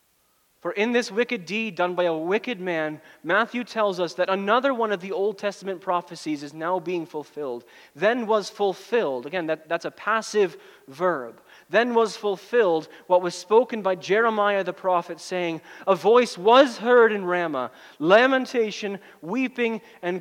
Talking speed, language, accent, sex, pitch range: 155 wpm, English, American, male, 175-220 Hz